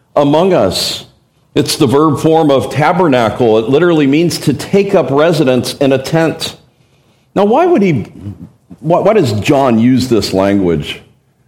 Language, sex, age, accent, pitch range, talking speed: English, male, 50-69, American, 120-155 Hz, 145 wpm